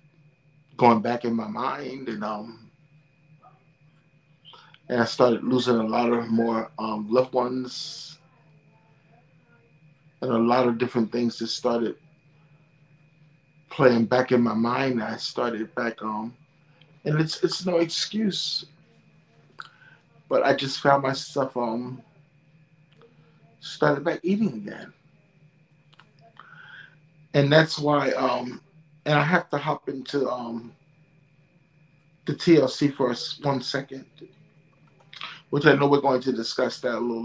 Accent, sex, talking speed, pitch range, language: American, male, 120 wpm, 130-155 Hz, English